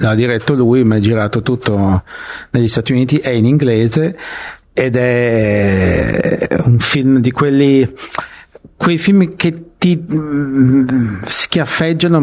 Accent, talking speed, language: Italian, 125 wpm, English